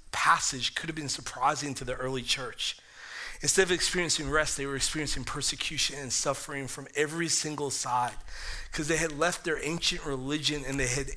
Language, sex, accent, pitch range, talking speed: English, male, American, 145-180 Hz, 175 wpm